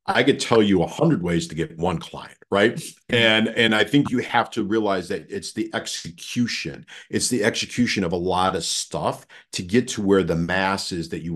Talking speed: 215 wpm